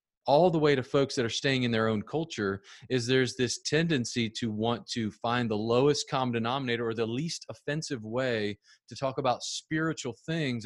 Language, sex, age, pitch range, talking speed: English, male, 30-49, 110-140 Hz, 190 wpm